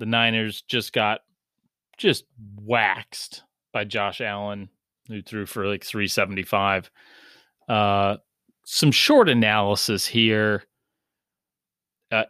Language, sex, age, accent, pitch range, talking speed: English, male, 30-49, American, 100-120 Hz, 100 wpm